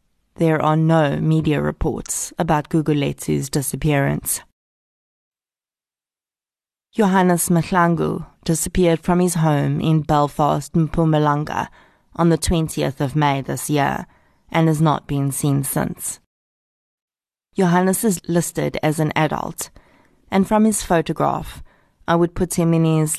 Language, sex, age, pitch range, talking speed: English, female, 30-49, 150-175 Hz, 120 wpm